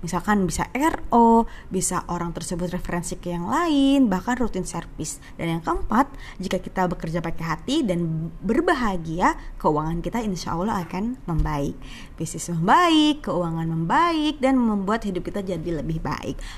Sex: female